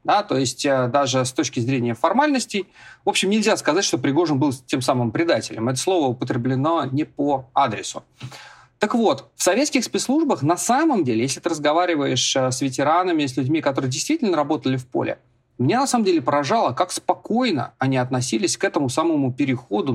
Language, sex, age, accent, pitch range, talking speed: Russian, male, 30-49, native, 130-195 Hz, 170 wpm